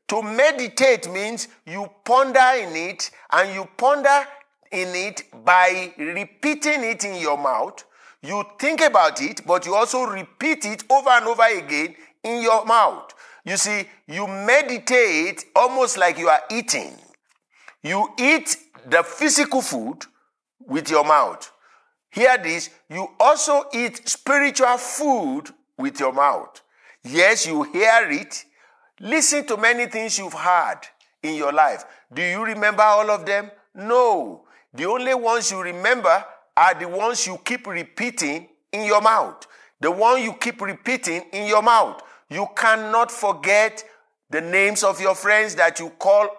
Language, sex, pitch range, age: English, male, 195-260 Hz, 50-69